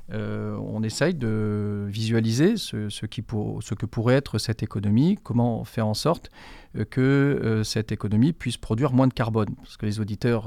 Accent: French